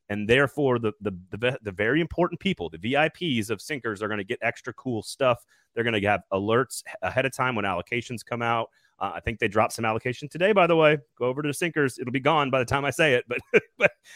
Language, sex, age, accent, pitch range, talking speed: English, male, 30-49, American, 100-140 Hz, 245 wpm